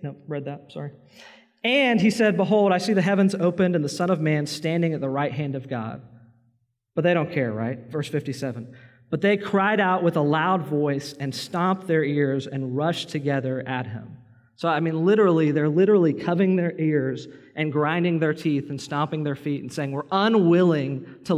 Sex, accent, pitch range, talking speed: male, American, 125-155 Hz, 200 wpm